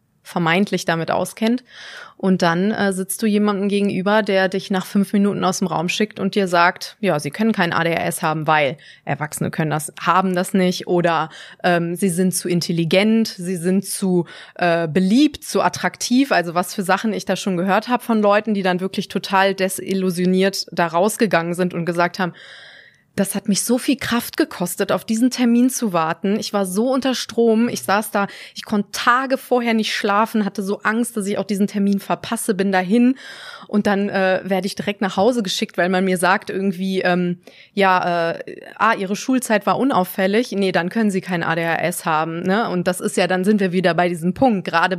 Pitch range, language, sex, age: 180-215 Hz, German, female, 20-39